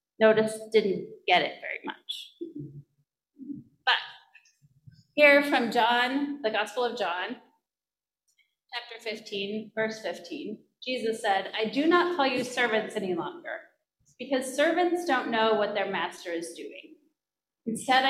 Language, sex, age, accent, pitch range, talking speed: English, female, 30-49, American, 200-295 Hz, 125 wpm